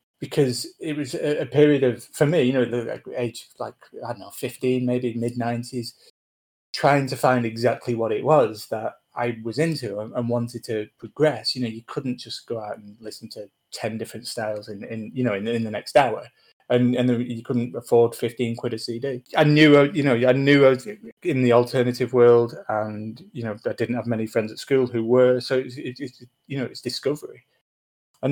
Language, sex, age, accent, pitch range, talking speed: English, male, 30-49, British, 115-145 Hz, 205 wpm